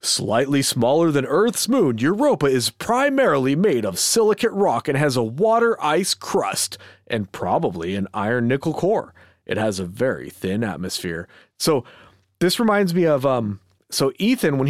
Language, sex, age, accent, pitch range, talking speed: English, male, 30-49, American, 120-180 Hz, 160 wpm